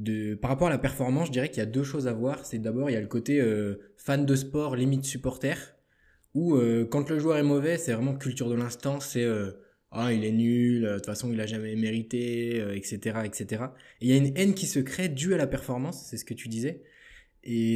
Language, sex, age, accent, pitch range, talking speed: French, male, 20-39, French, 110-135 Hz, 265 wpm